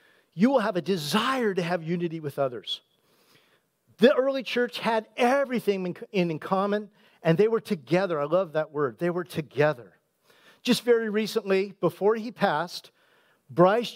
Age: 50-69